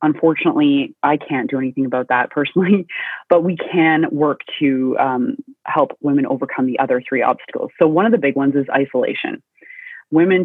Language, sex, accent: English, female, American